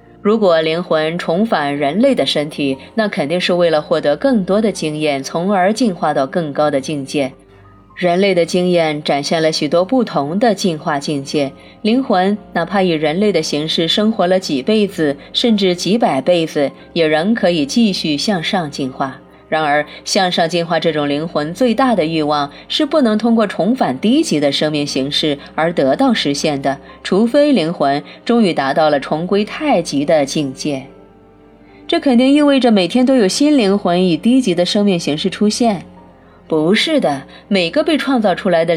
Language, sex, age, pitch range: Chinese, female, 20-39, 150-210 Hz